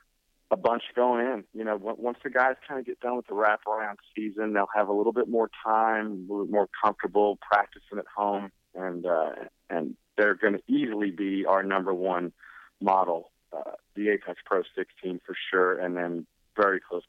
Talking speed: 190 wpm